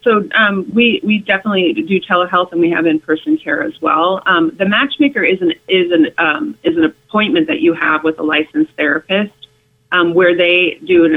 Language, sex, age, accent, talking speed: English, female, 30-49, American, 175 wpm